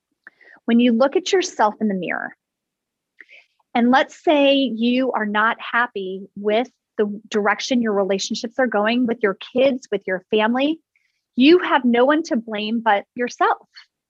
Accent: American